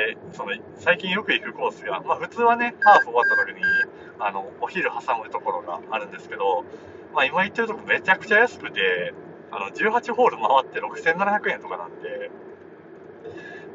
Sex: male